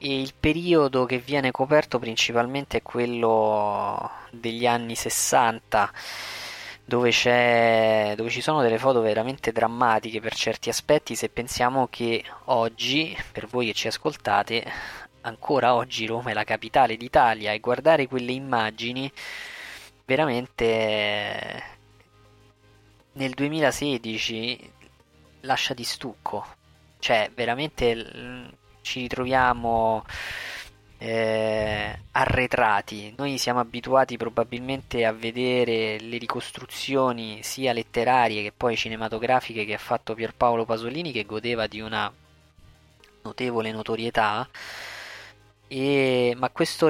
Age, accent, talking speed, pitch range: 20-39, native, 105 wpm, 110-125 Hz